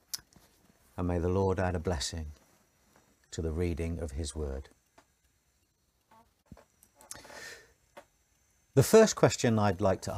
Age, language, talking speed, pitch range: 50-69, English, 110 wpm, 85-120 Hz